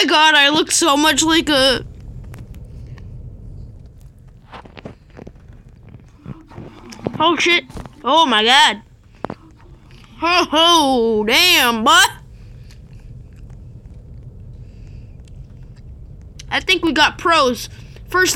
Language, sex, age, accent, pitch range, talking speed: English, female, 10-29, American, 225-365 Hz, 70 wpm